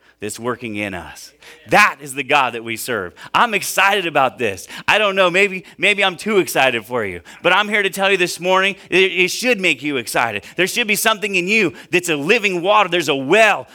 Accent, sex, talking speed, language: American, male, 225 wpm, English